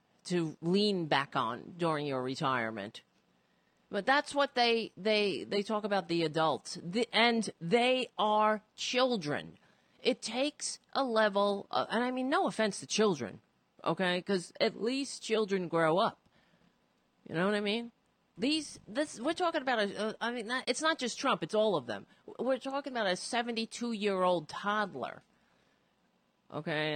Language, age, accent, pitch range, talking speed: English, 40-59, American, 180-255 Hz, 160 wpm